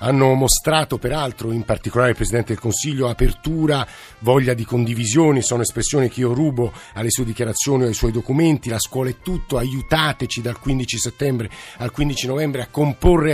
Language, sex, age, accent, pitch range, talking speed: Italian, male, 50-69, native, 115-145 Hz, 170 wpm